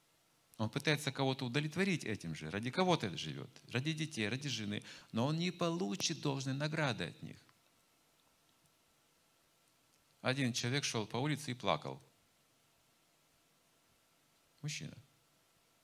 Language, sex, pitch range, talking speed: Russian, male, 110-160 Hz, 115 wpm